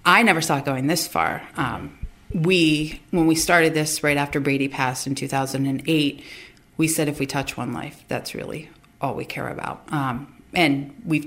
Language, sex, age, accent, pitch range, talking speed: English, female, 40-59, American, 140-165 Hz, 185 wpm